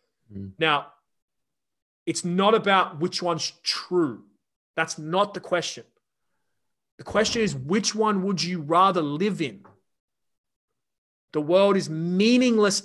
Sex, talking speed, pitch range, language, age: male, 115 wpm, 150-200 Hz, English, 30-49